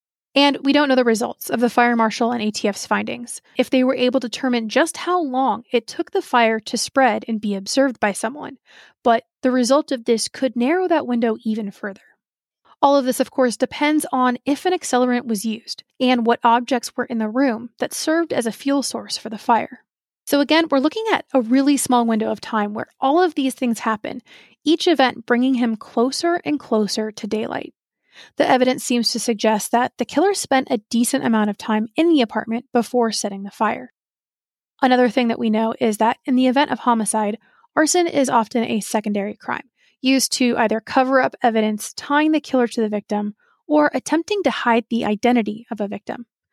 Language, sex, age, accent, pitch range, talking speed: English, female, 30-49, American, 225-275 Hz, 205 wpm